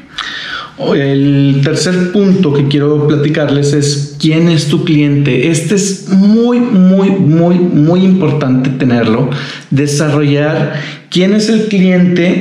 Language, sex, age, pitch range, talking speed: Spanish, male, 40-59, 135-160 Hz, 115 wpm